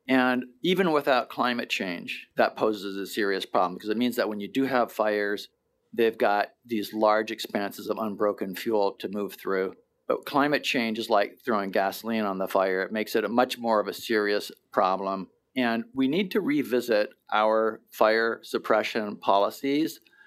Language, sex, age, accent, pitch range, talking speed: English, male, 50-69, American, 110-125 Hz, 175 wpm